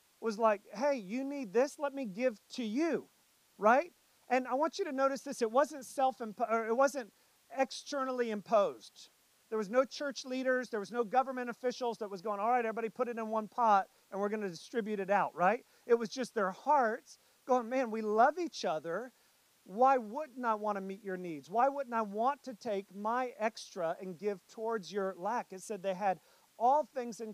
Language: English